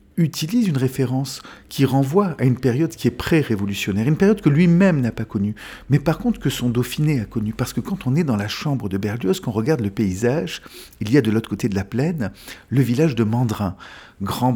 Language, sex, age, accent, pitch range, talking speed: French, male, 50-69, French, 110-155 Hz, 225 wpm